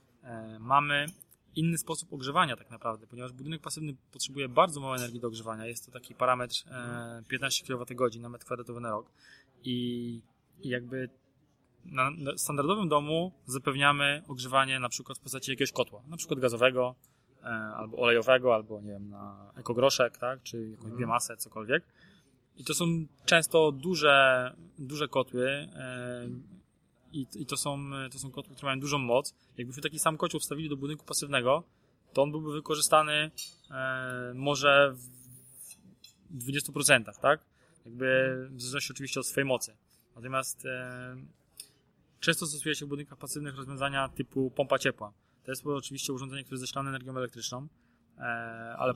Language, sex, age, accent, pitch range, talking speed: Polish, male, 20-39, native, 125-145 Hz, 145 wpm